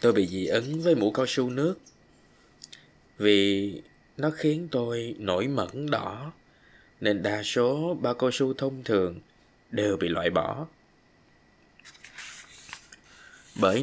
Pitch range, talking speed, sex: 100-130 Hz, 125 wpm, male